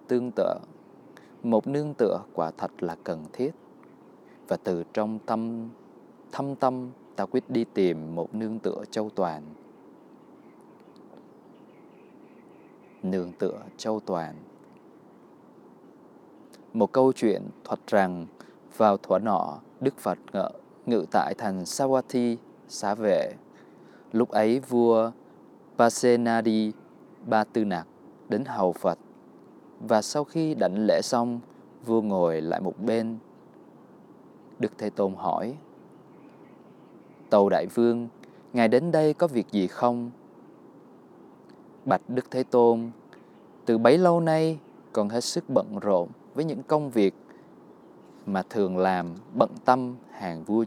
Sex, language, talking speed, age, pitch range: male, Vietnamese, 120 wpm, 20-39, 105-130 Hz